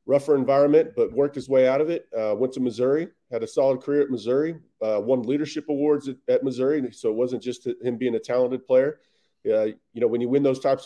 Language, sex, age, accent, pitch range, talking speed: English, male, 40-59, American, 125-155 Hz, 240 wpm